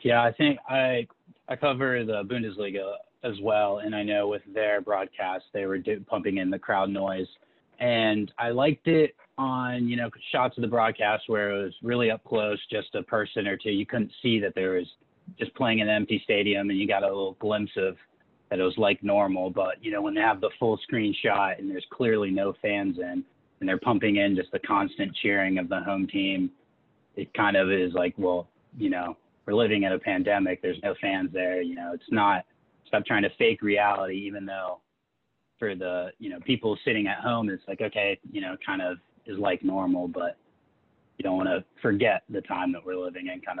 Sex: male